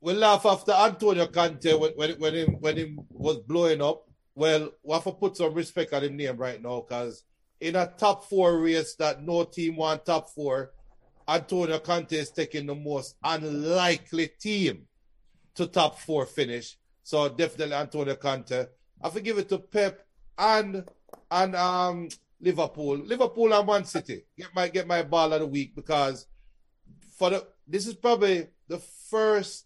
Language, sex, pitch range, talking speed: English, male, 140-185 Hz, 170 wpm